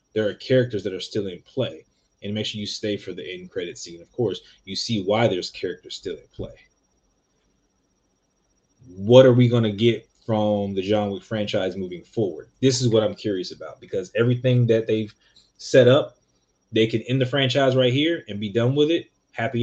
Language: English